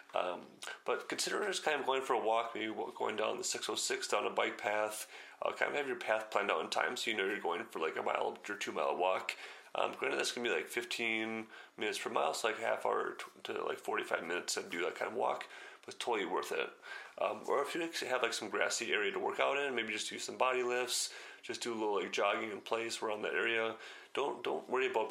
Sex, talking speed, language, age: male, 255 wpm, English, 30-49